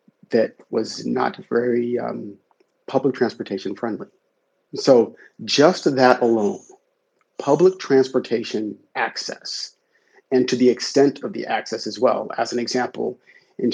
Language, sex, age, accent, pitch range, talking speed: English, male, 40-59, American, 115-140 Hz, 120 wpm